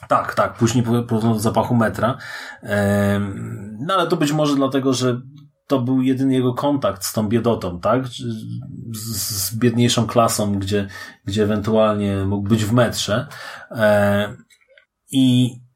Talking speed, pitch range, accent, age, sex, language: 125 wpm, 105-130 Hz, native, 30-49, male, Polish